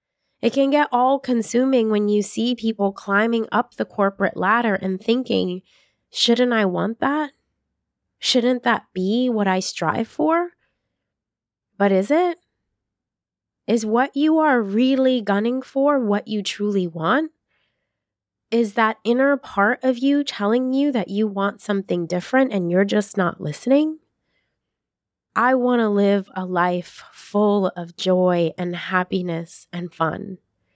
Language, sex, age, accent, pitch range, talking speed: English, female, 20-39, American, 195-250 Hz, 140 wpm